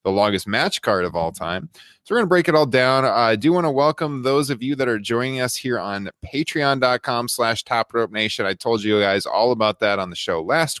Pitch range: 100-130 Hz